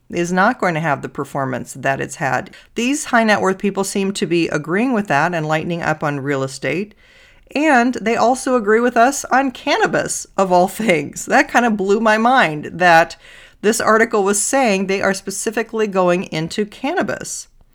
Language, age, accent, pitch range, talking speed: English, 40-59, American, 155-205 Hz, 185 wpm